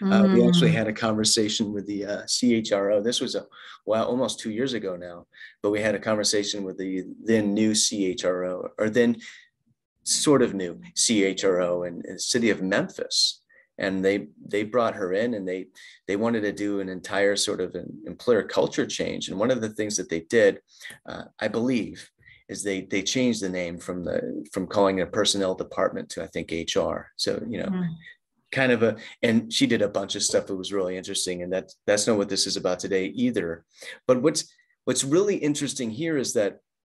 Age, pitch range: 30-49, 95-145 Hz